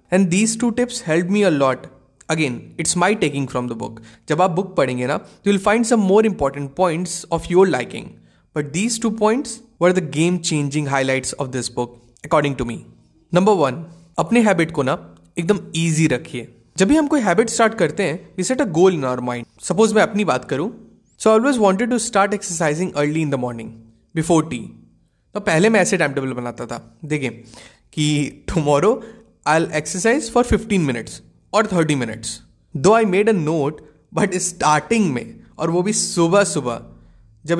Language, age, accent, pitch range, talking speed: Hindi, 20-39, native, 145-210 Hz, 190 wpm